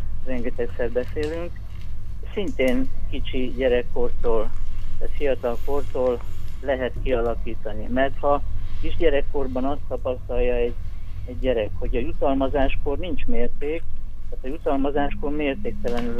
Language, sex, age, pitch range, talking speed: Hungarian, male, 50-69, 95-130 Hz, 100 wpm